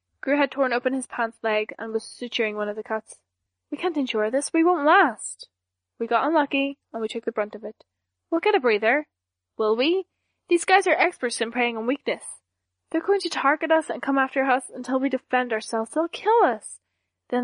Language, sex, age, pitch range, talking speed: English, female, 10-29, 215-260 Hz, 215 wpm